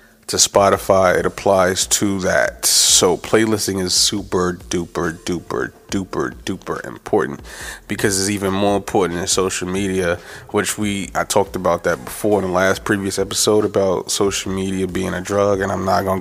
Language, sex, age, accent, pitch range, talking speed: English, male, 20-39, American, 90-100 Hz, 165 wpm